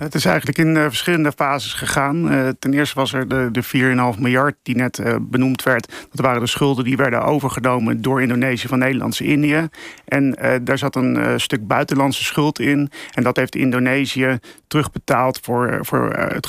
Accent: Dutch